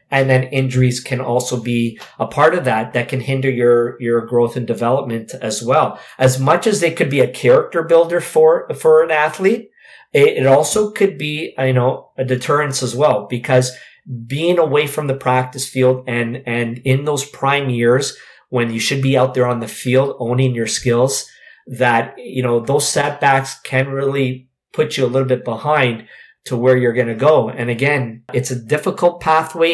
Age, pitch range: 50-69, 125-140 Hz